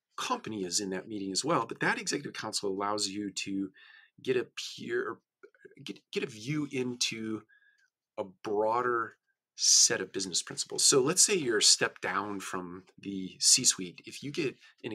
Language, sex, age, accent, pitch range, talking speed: English, male, 40-59, American, 95-125 Hz, 170 wpm